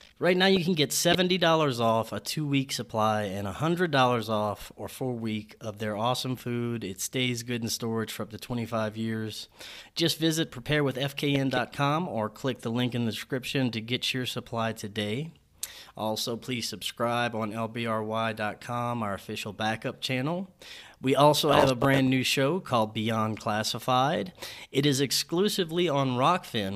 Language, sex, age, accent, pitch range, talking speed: English, male, 30-49, American, 110-130 Hz, 150 wpm